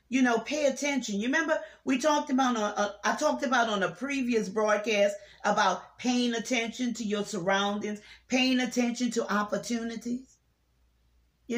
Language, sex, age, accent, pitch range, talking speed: English, female, 40-59, American, 205-270 Hz, 140 wpm